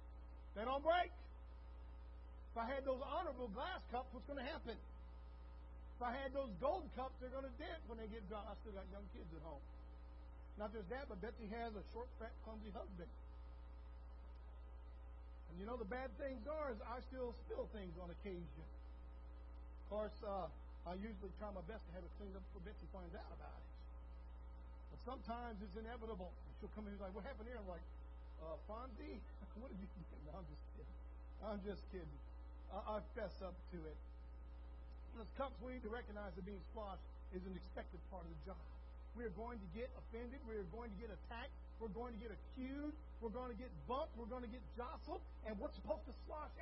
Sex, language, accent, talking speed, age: male, English, American, 200 wpm, 60-79